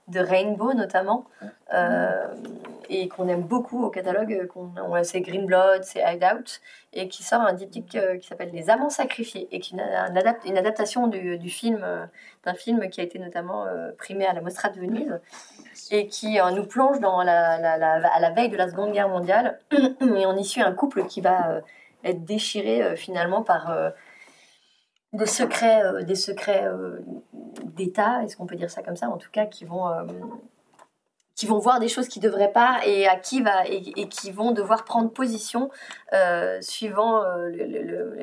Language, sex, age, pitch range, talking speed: French, female, 20-39, 180-230 Hz, 180 wpm